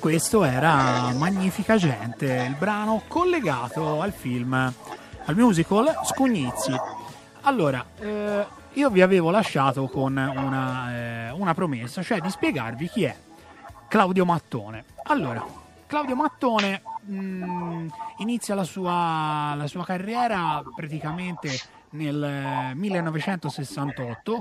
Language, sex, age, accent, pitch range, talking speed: Italian, male, 30-49, native, 130-190 Hz, 105 wpm